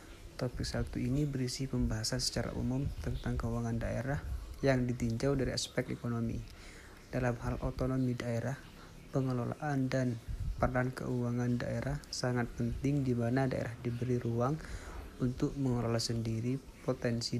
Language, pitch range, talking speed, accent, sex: Indonesian, 115-130 Hz, 120 wpm, native, male